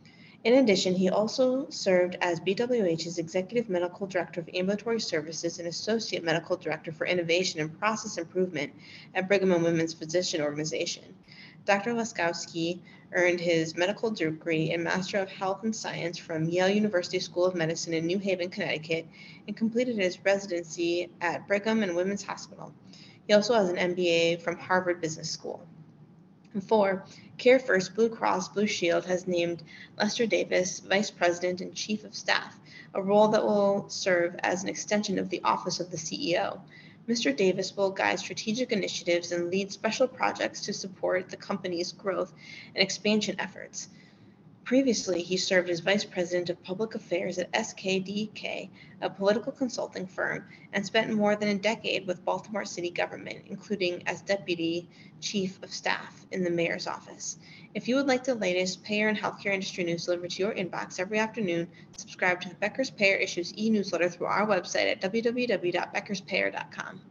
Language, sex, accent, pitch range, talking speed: English, female, American, 175-205 Hz, 160 wpm